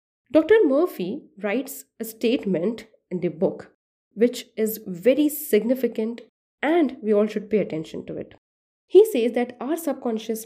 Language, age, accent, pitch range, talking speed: English, 20-39, Indian, 175-230 Hz, 145 wpm